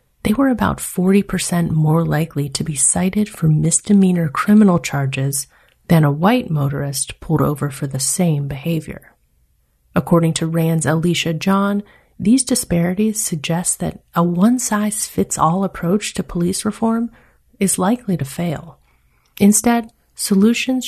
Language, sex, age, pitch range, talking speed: English, female, 30-49, 155-200 Hz, 125 wpm